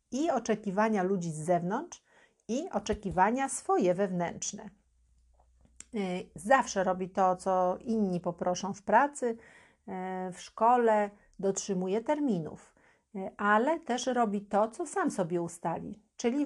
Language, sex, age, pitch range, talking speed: Polish, female, 50-69, 185-235 Hz, 110 wpm